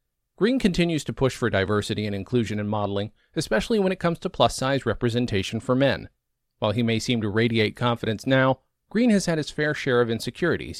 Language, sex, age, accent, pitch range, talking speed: English, male, 40-59, American, 115-150 Hz, 195 wpm